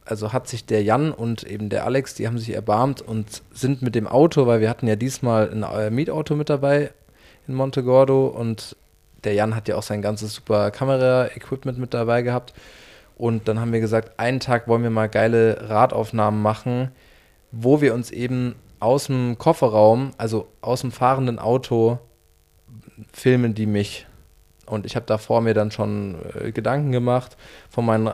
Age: 20-39